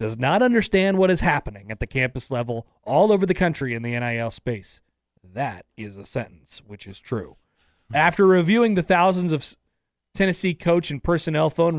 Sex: male